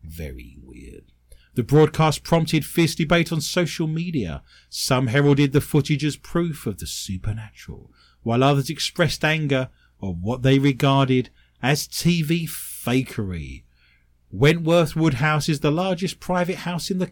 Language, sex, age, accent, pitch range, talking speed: English, male, 40-59, British, 100-165 Hz, 135 wpm